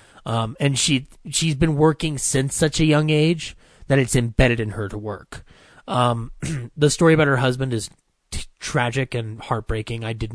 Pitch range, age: 115-140 Hz, 30-49